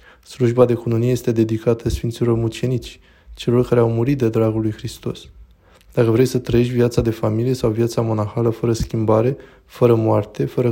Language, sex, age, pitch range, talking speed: Romanian, male, 20-39, 110-125 Hz, 170 wpm